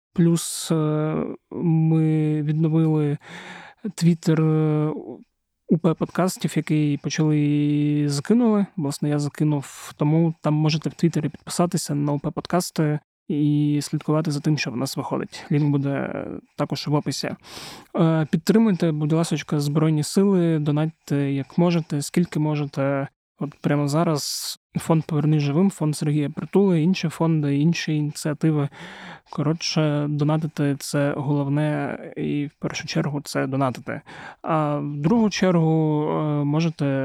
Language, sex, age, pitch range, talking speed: Ukrainian, male, 20-39, 145-170 Hz, 115 wpm